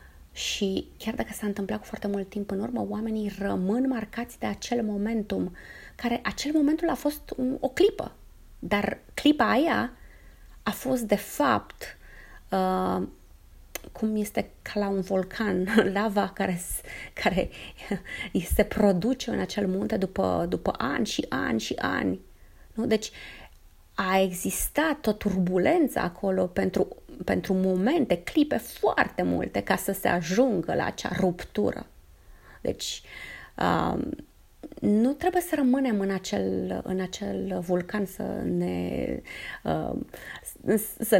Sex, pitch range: female, 185-230 Hz